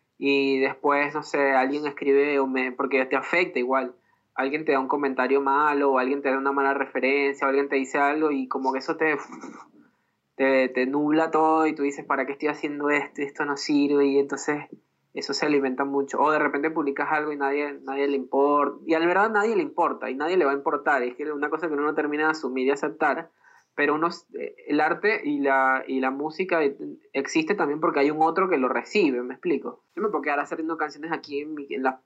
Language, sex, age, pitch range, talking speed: English, male, 20-39, 135-155 Hz, 225 wpm